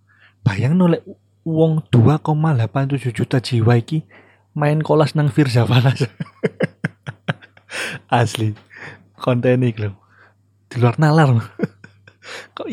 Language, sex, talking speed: Indonesian, male, 100 wpm